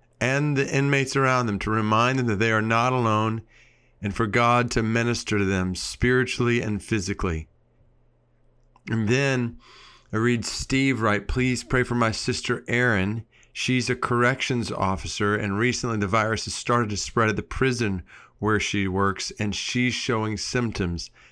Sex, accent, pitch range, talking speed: male, American, 105-125 Hz, 160 wpm